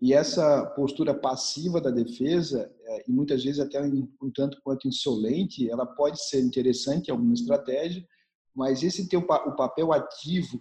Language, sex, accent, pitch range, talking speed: Portuguese, male, Brazilian, 135-170 Hz, 155 wpm